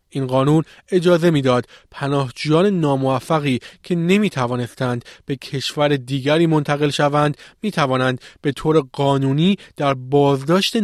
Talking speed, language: 105 wpm, Persian